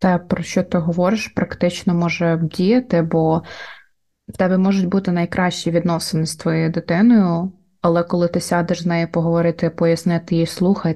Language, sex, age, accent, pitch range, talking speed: Ukrainian, female, 20-39, native, 170-195 Hz, 155 wpm